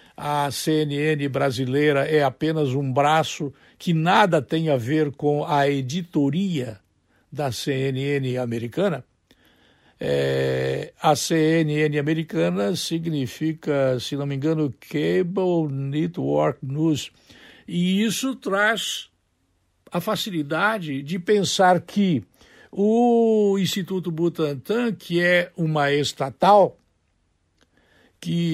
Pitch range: 135-175 Hz